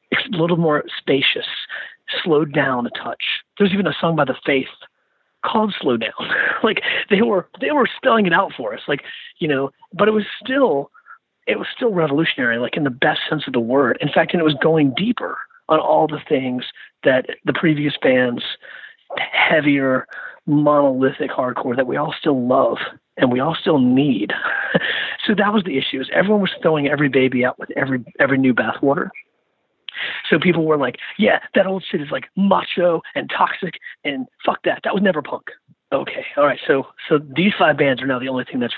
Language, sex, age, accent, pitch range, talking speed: English, male, 40-59, American, 140-195 Hz, 195 wpm